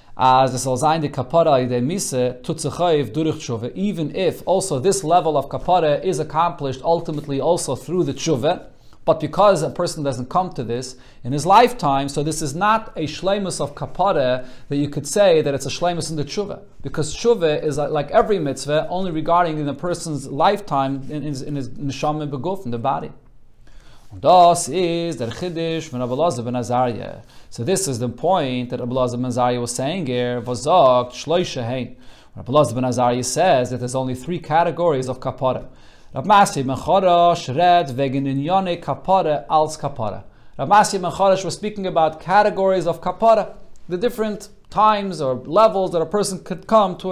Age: 30-49